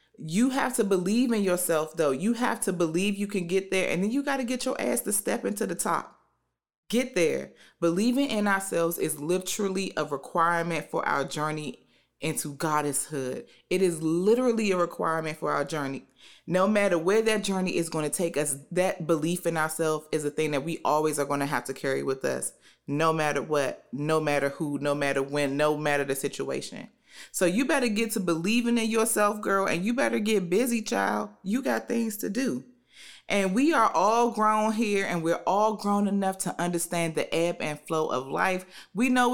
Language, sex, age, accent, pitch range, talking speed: English, female, 30-49, American, 155-215 Hz, 200 wpm